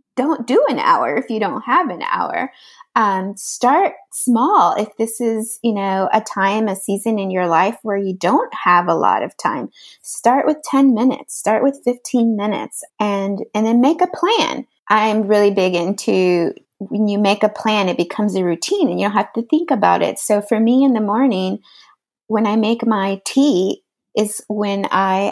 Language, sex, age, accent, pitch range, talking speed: English, female, 20-39, American, 195-255 Hz, 195 wpm